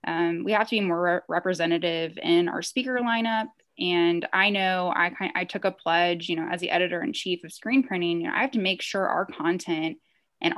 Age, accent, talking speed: 20-39, American, 215 wpm